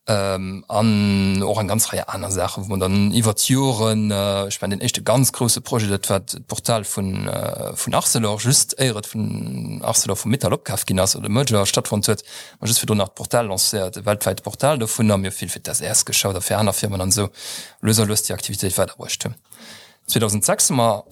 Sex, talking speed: male, 200 wpm